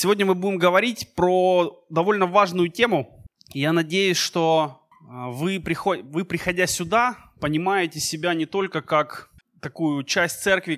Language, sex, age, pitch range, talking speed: Russian, male, 20-39, 155-190 Hz, 120 wpm